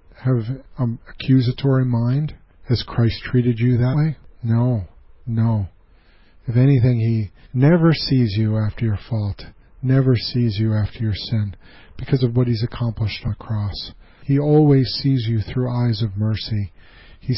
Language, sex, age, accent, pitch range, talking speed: English, male, 40-59, American, 105-130 Hz, 150 wpm